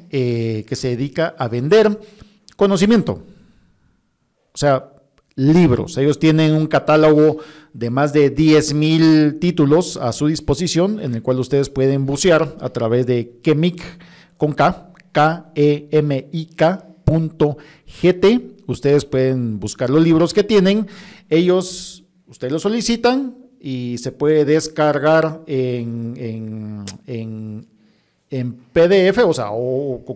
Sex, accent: male, Mexican